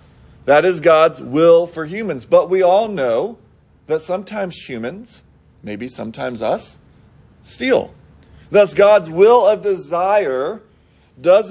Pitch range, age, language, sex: 140-180 Hz, 40-59, English, male